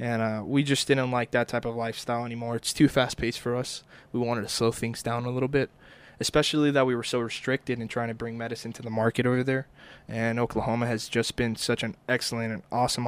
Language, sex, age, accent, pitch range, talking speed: English, male, 20-39, American, 125-160 Hz, 235 wpm